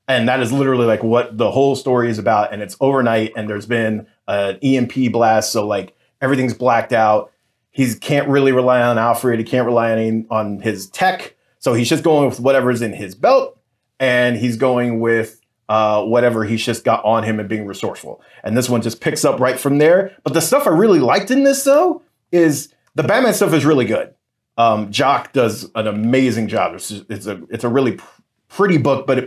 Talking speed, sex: 215 wpm, male